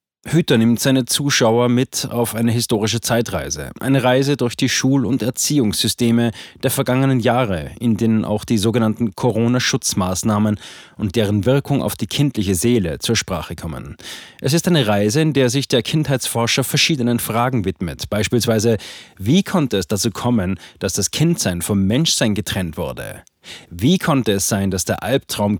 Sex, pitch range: male, 105-130 Hz